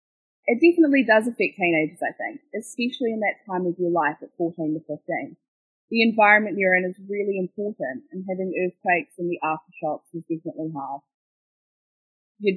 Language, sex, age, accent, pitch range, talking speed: English, female, 20-39, Australian, 165-215 Hz, 165 wpm